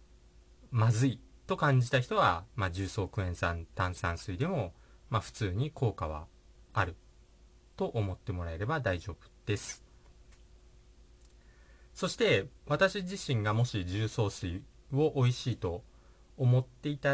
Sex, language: male, Japanese